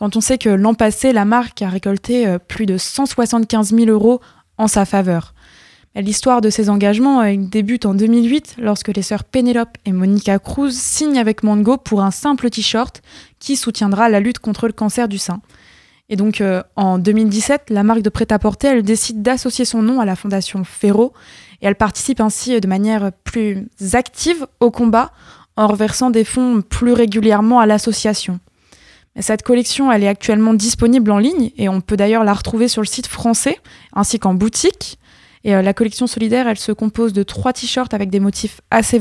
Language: French